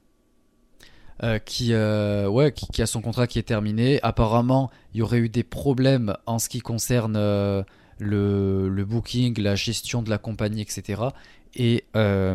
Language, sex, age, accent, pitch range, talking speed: French, male, 20-39, French, 100-120 Hz, 155 wpm